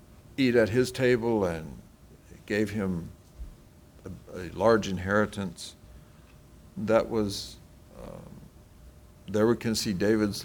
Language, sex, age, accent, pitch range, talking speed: English, male, 60-79, American, 85-105 Hz, 110 wpm